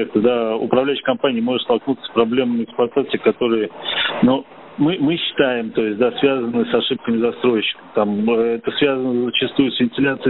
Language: Russian